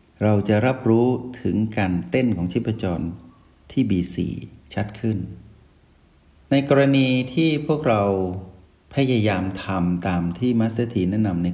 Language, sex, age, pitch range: Thai, male, 60-79, 90-115 Hz